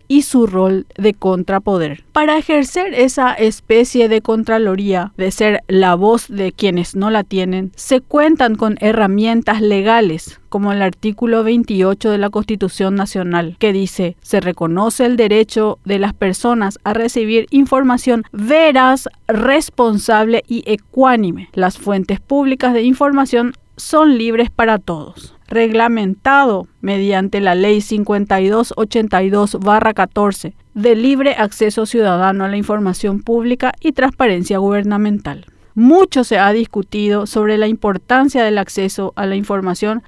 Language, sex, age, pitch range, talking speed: Spanish, female, 40-59, 200-245 Hz, 130 wpm